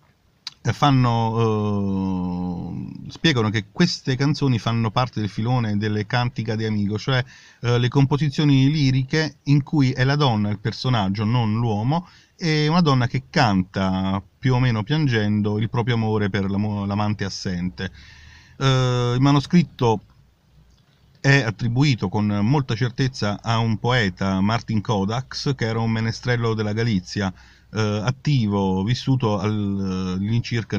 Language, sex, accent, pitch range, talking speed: Italian, male, native, 100-135 Hz, 130 wpm